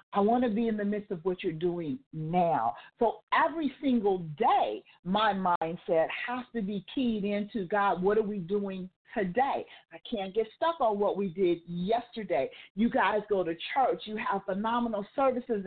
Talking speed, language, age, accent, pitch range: 180 wpm, English, 50-69, American, 190-250 Hz